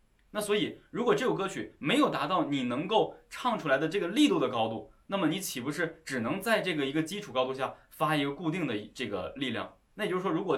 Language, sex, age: Chinese, male, 20-39